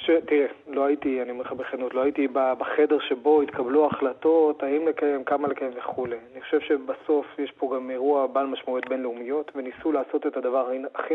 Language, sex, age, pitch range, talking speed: Hebrew, male, 30-49, 140-160 Hz, 185 wpm